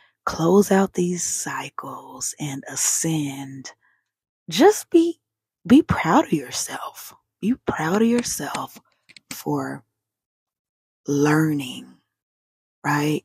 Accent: American